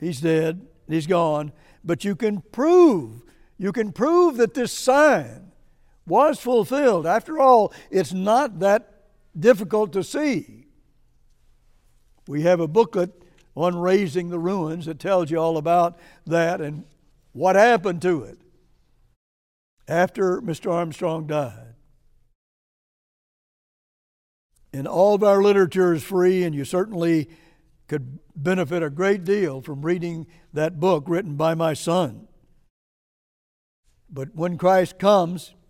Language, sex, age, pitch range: English, male, 60-79, 155-200 Hz